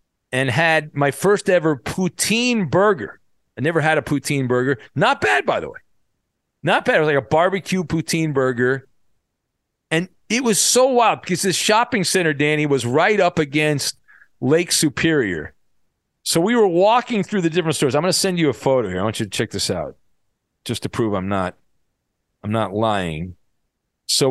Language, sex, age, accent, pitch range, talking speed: English, male, 40-59, American, 125-175 Hz, 185 wpm